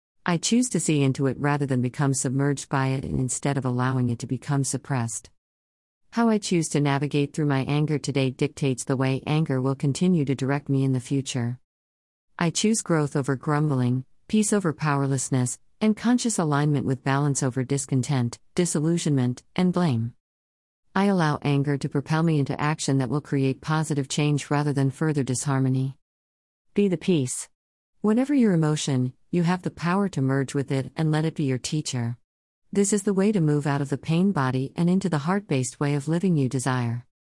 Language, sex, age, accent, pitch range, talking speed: English, female, 50-69, American, 130-155 Hz, 185 wpm